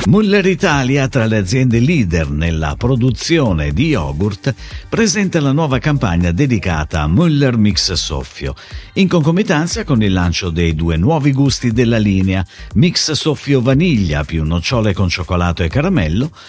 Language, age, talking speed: Italian, 50-69, 140 wpm